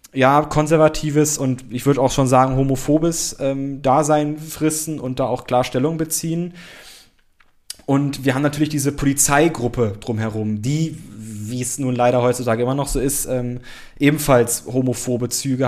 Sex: male